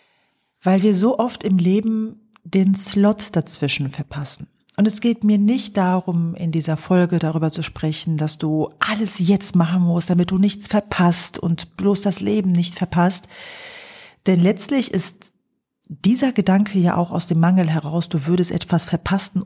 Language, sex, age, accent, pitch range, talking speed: German, female, 40-59, German, 165-205 Hz, 165 wpm